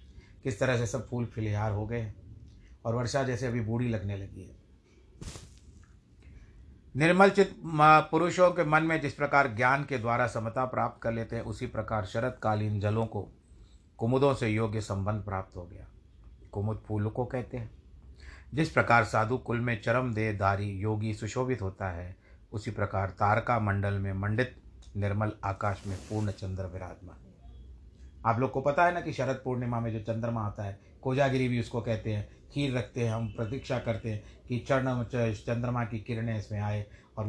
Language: Hindi